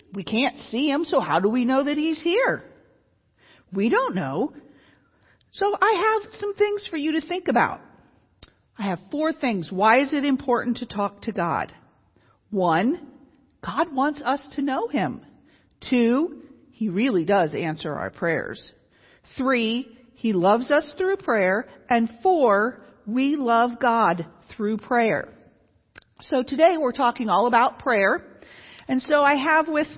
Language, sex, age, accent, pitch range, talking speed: English, female, 50-69, American, 215-300 Hz, 150 wpm